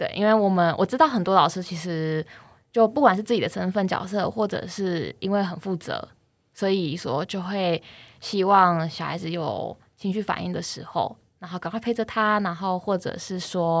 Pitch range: 165-205 Hz